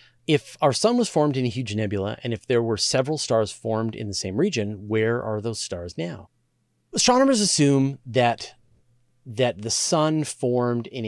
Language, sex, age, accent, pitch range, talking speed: English, male, 30-49, American, 105-130 Hz, 180 wpm